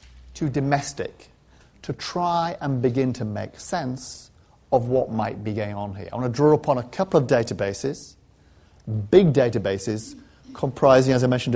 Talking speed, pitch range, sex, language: 160 wpm, 100-145 Hz, male, English